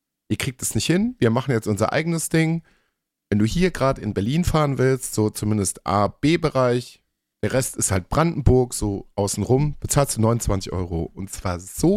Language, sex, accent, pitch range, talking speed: German, male, German, 100-145 Hz, 190 wpm